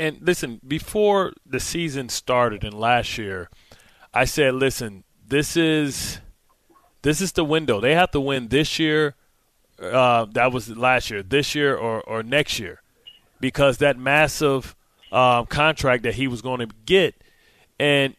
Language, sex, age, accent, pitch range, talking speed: English, male, 30-49, American, 125-155 Hz, 155 wpm